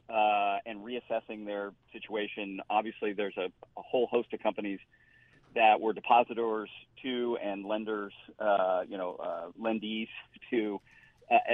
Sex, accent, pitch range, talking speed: male, American, 105-115 Hz, 135 wpm